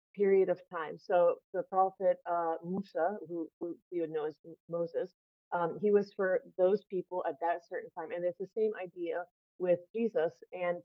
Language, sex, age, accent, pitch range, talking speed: English, female, 30-49, American, 170-200 Hz, 185 wpm